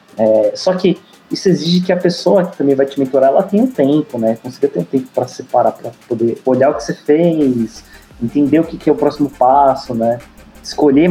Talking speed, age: 215 wpm, 20-39